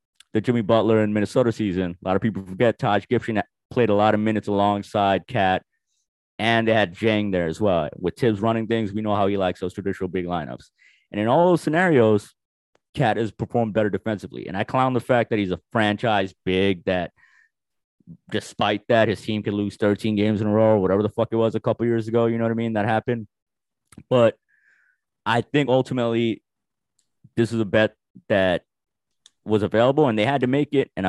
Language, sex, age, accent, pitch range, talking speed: English, male, 30-49, American, 95-115 Hz, 205 wpm